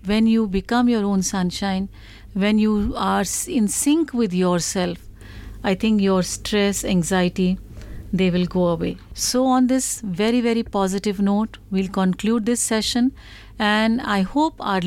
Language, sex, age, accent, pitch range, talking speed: Hindi, female, 50-69, native, 190-240 Hz, 150 wpm